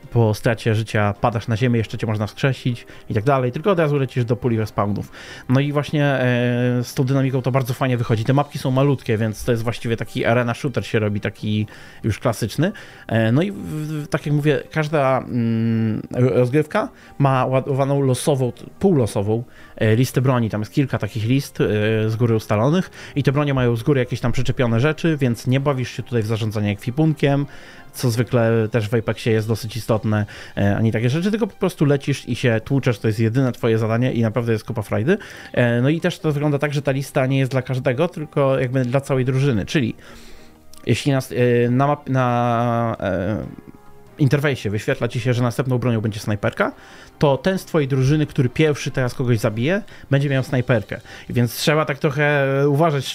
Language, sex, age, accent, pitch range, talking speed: Polish, male, 20-39, native, 115-145 Hz, 185 wpm